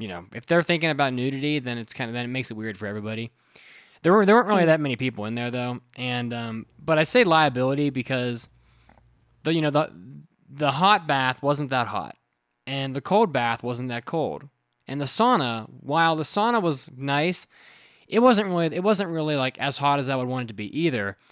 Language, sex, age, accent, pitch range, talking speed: English, male, 20-39, American, 110-145 Hz, 220 wpm